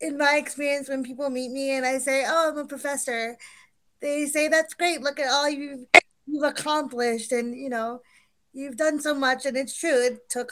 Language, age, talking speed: English, 20-39, 205 wpm